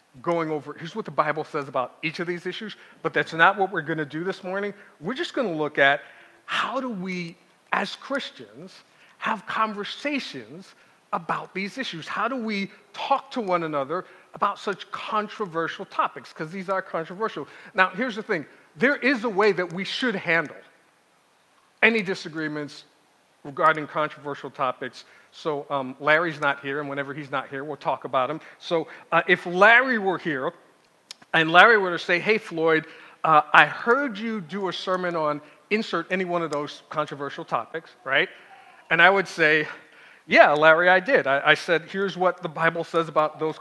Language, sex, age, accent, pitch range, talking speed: English, male, 40-59, American, 155-200 Hz, 180 wpm